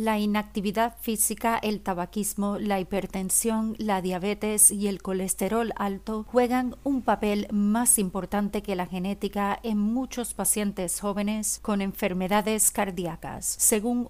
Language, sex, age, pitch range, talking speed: Spanish, female, 40-59, 190-225 Hz, 125 wpm